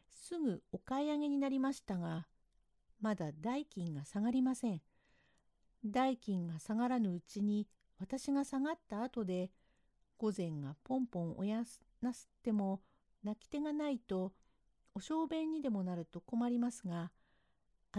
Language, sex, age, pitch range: Japanese, female, 50-69, 170-260 Hz